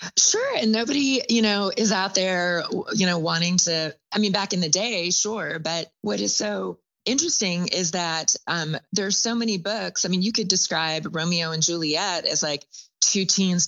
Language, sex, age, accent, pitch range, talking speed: English, female, 20-39, American, 150-190 Hz, 190 wpm